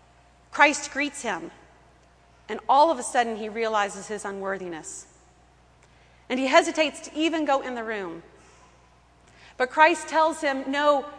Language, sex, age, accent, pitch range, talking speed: English, female, 40-59, American, 195-290 Hz, 140 wpm